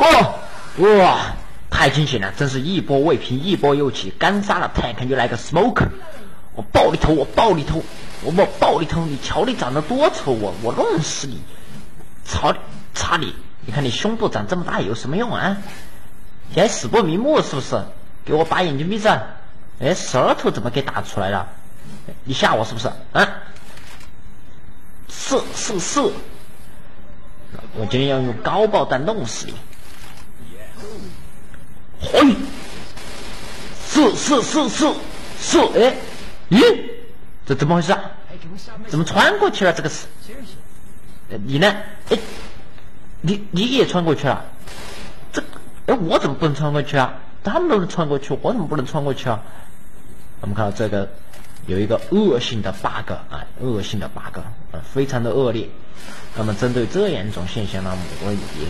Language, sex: Chinese, male